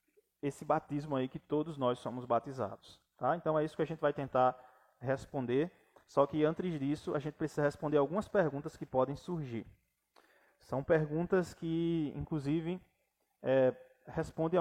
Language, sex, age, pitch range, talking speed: Portuguese, male, 20-39, 140-180 Hz, 145 wpm